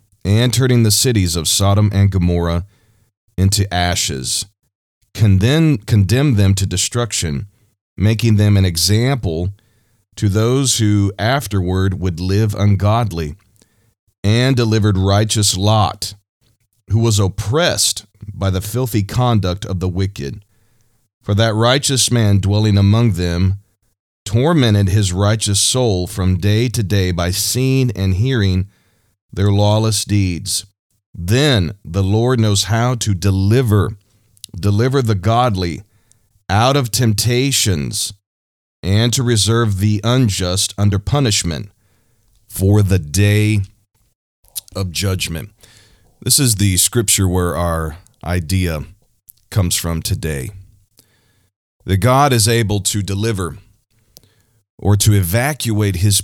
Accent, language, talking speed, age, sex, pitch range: American, English, 115 wpm, 40-59, male, 95-115 Hz